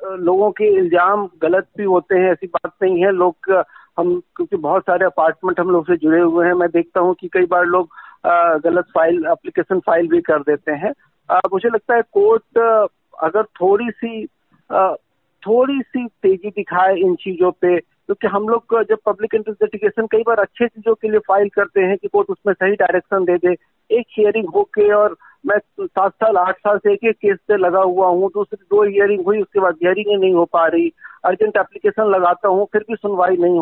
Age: 50-69